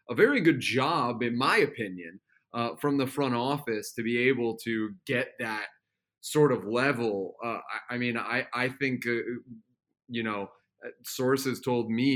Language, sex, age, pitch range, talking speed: English, male, 30-49, 120-145 Hz, 170 wpm